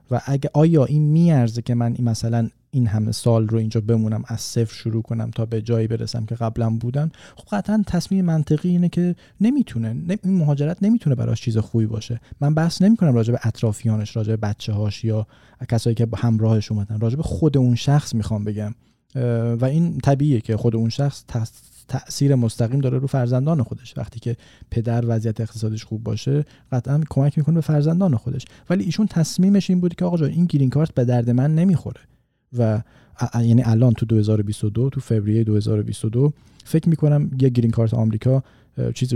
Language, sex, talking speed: Persian, male, 185 wpm